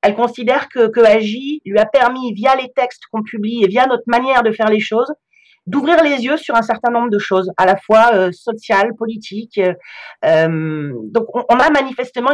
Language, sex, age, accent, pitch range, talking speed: French, female, 40-59, French, 205-265 Hz, 205 wpm